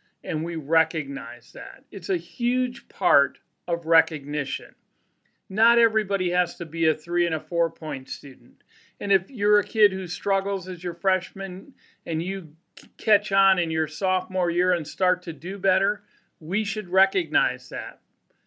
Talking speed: 160 wpm